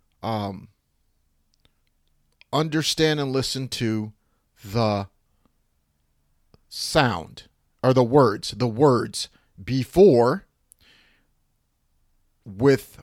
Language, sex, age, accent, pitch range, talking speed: English, male, 40-59, American, 95-150 Hz, 65 wpm